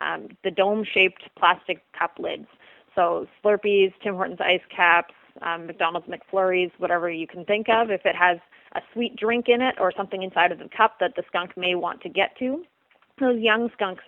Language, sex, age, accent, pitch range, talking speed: English, female, 30-49, American, 180-220 Hz, 190 wpm